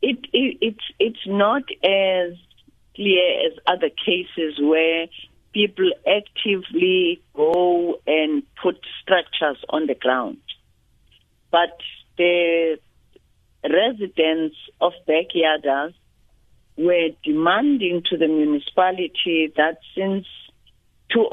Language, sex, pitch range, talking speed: English, female, 155-200 Hz, 95 wpm